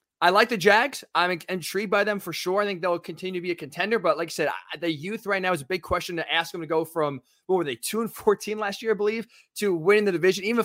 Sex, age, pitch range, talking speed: male, 20-39, 155-210 Hz, 285 wpm